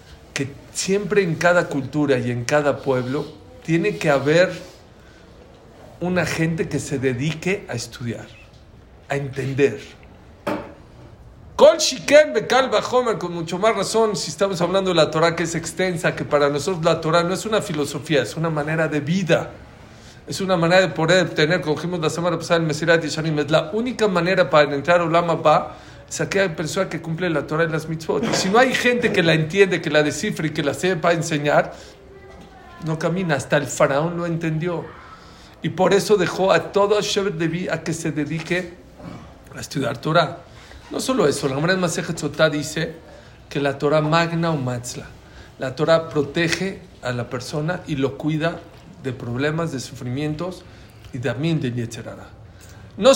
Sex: male